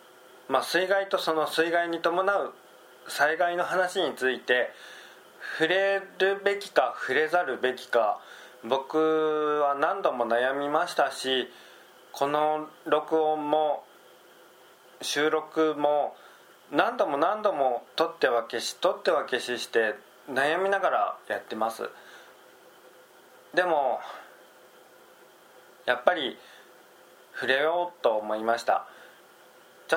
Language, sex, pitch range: Japanese, male, 130-175 Hz